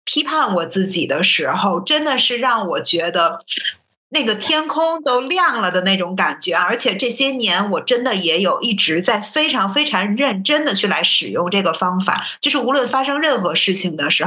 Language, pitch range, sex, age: Chinese, 190-255 Hz, female, 50-69